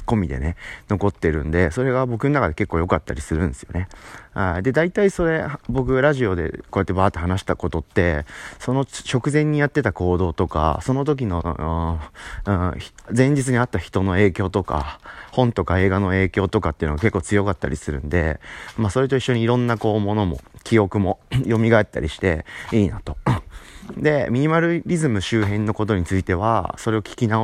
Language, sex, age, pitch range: Japanese, male, 30-49, 85-115 Hz